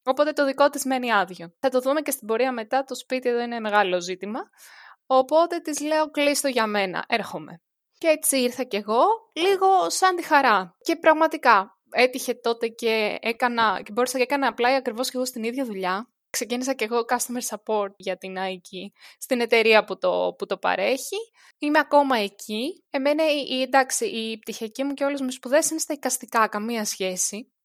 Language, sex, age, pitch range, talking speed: Greek, female, 20-39, 210-270 Hz, 180 wpm